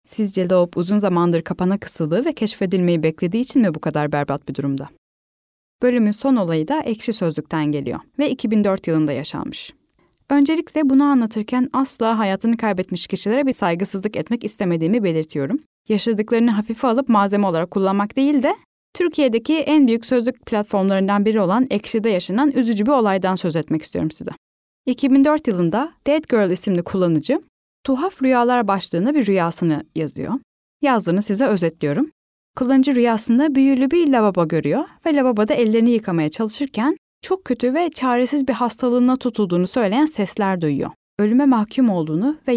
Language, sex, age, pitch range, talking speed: Turkish, female, 10-29, 180-260 Hz, 145 wpm